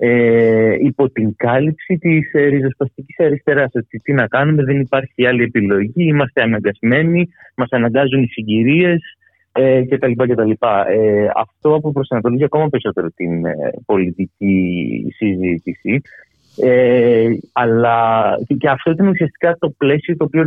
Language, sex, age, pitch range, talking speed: Greek, male, 30-49, 100-135 Hz, 145 wpm